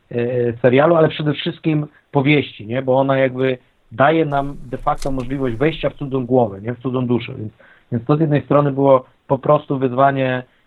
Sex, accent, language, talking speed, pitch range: male, native, Polish, 180 wpm, 125-145 Hz